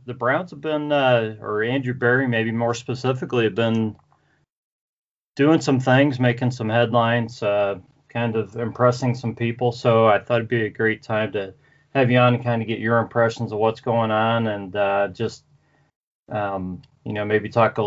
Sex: male